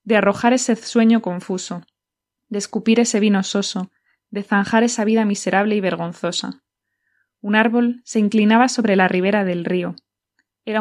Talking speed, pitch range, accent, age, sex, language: 150 wpm, 190-225 Hz, Spanish, 20-39, female, Spanish